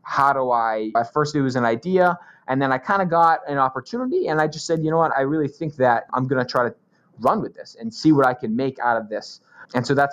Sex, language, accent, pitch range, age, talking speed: male, English, American, 115-150 Hz, 20-39, 285 wpm